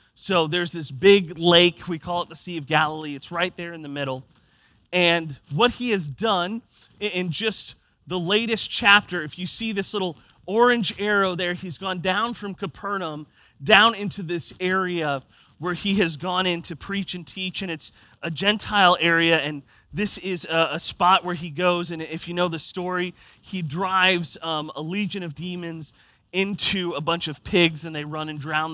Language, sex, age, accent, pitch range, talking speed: English, male, 30-49, American, 150-185 Hz, 190 wpm